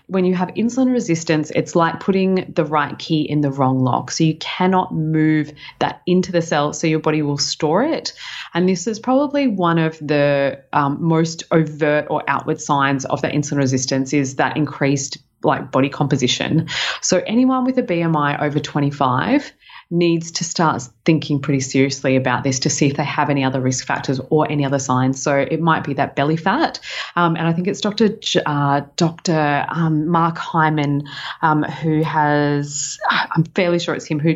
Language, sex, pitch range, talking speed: English, female, 145-185 Hz, 190 wpm